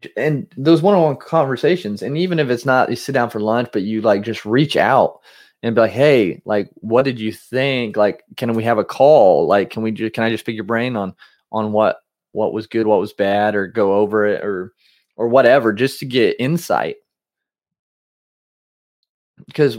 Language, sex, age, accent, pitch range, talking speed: English, male, 30-49, American, 105-130 Hz, 200 wpm